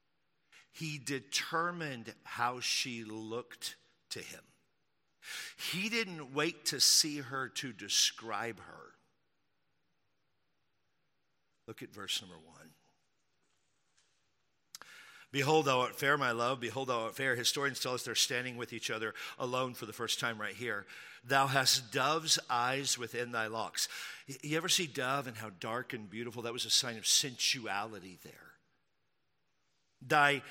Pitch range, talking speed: 120-155 Hz, 140 wpm